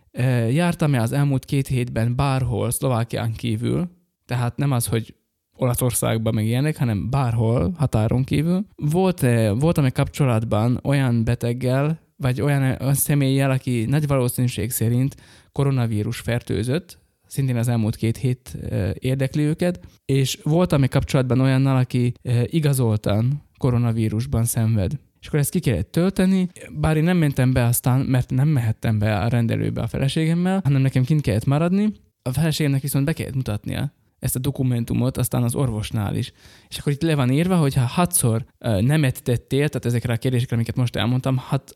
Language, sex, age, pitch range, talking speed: Hungarian, male, 20-39, 120-145 Hz, 155 wpm